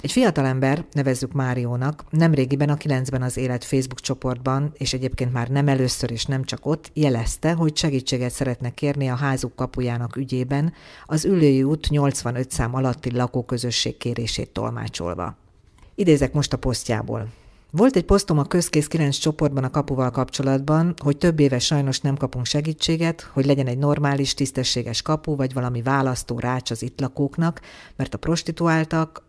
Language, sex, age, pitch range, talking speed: Hungarian, female, 50-69, 125-150 Hz, 155 wpm